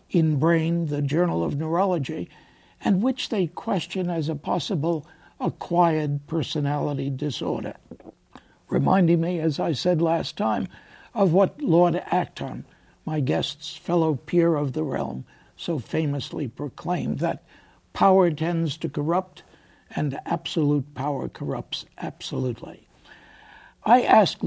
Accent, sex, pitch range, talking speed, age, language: American, male, 150-180 Hz, 120 wpm, 60-79, English